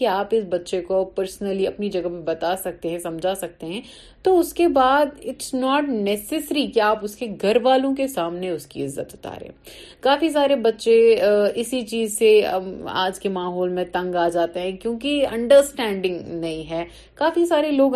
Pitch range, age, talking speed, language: 175-230 Hz, 30-49, 170 wpm, Urdu